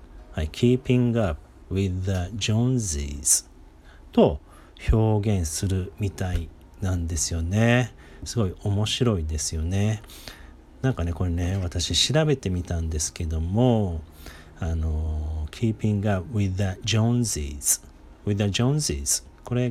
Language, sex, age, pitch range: Japanese, male, 40-59, 80-120 Hz